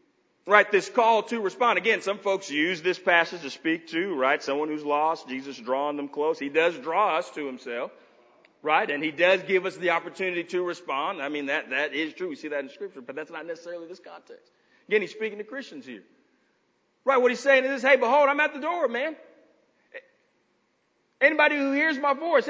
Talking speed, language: 210 wpm, English